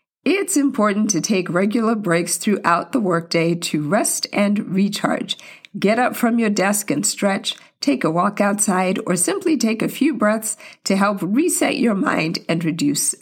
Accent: American